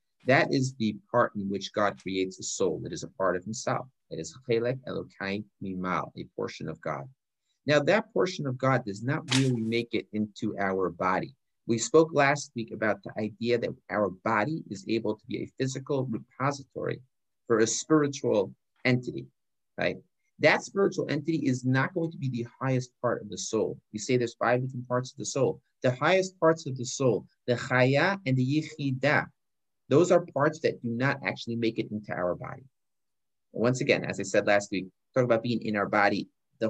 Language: English